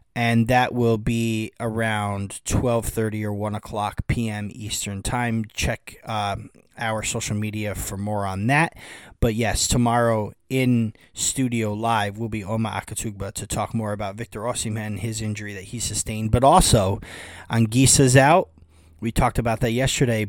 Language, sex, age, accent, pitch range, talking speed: English, male, 30-49, American, 105-120 Hz, 155 wpm